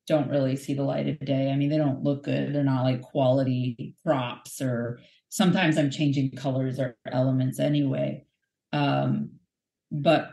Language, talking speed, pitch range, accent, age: English, 170 wpm, 130-160 Hz, American, 30-49